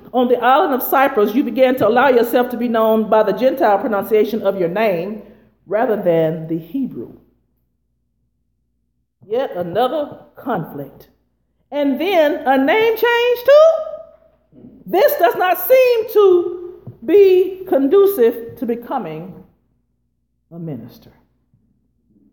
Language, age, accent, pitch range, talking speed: English, 50-69, American, 195-320 Hz, 120 wpm